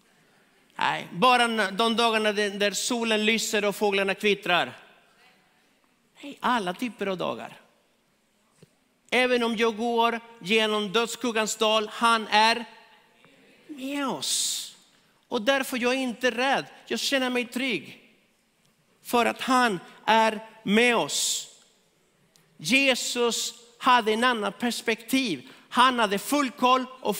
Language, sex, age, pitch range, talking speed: Swedish, male, 50-69, 200-245 Hz, 115 wpm